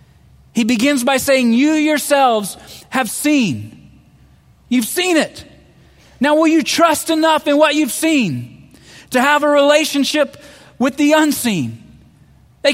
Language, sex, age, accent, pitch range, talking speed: English, male, 40-59, American, 185-285 Hz, 130 wpm